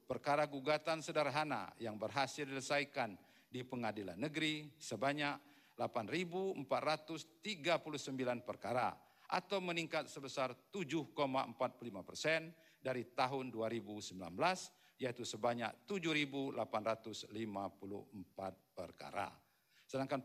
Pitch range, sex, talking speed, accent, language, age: 120-155 Hz, male, 75 wpm, native, Indonesian, 50-69